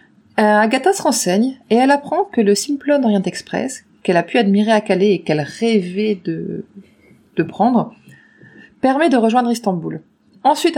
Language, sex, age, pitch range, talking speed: French, female, 30-49, 185-235 Hz, 160 wpm